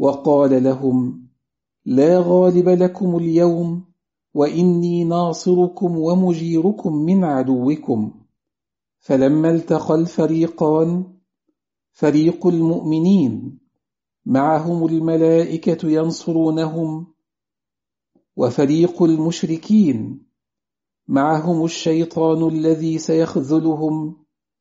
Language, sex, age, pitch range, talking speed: English, male, 50-69, 150-175 Hz, 60 wpm